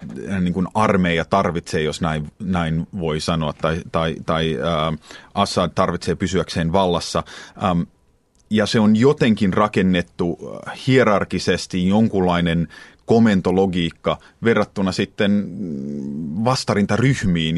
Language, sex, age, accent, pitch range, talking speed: Finnish, male, 30-49, native, 85-100 Hz, 100 wpm